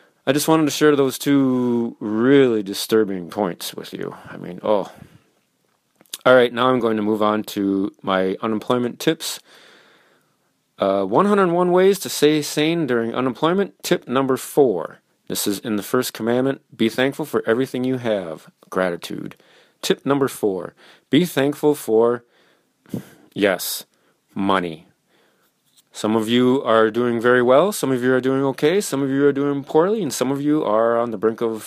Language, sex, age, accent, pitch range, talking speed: English, male, 30-49, American, 105-140 Hz, 165 wpm